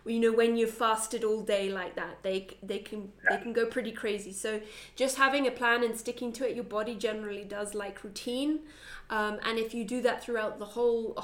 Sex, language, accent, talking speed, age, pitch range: female, English, British, 220 wpm, 20-39, 210-240 Hz